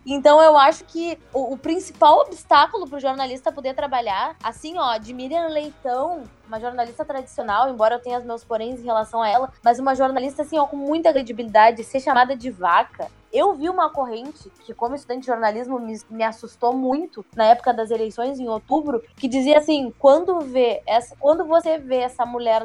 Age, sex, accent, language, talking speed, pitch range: 20-39, female, Brazilian, Portuguese, 190 wpm, 235-285 Hz